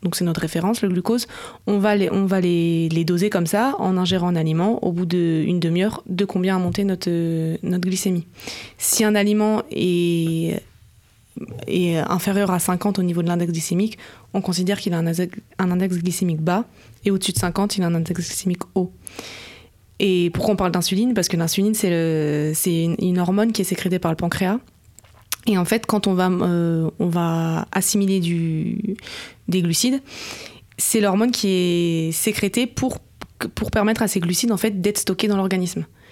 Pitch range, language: 175-200 Hz, French